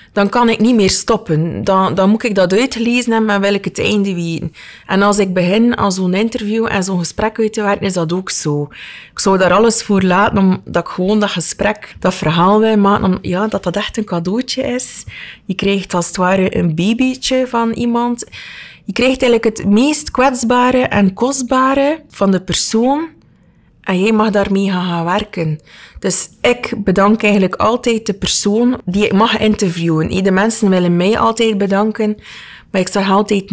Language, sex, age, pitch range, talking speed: Dutch, female, 30-49, 180-220 Hz, 190 wpm